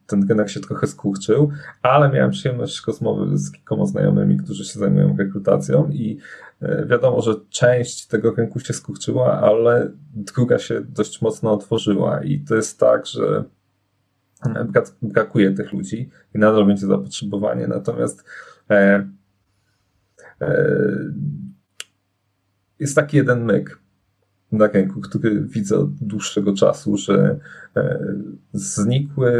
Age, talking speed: 30-49, 125 wpm